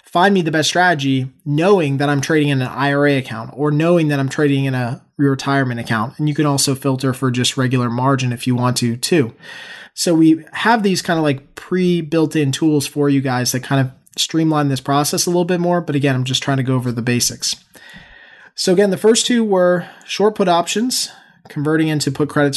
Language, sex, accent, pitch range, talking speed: English, male, American, 140-180 Hz, 220 wpm